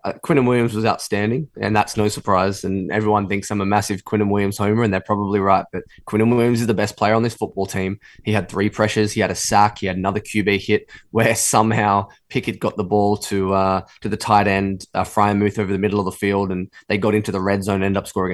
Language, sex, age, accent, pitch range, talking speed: English, male, 10-29, Australian, 100-110 Hz, 250 wpm